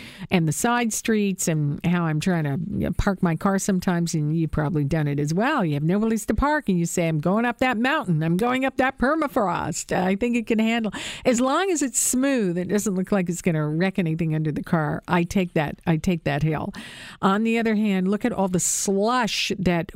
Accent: American